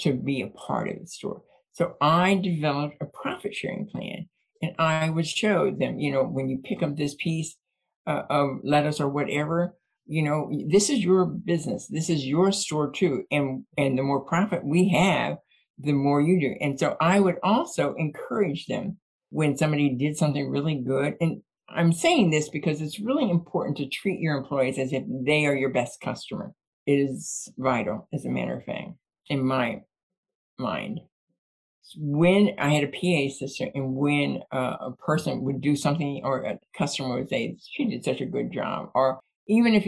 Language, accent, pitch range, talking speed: English, American, 140-180 Hz, 185 wpm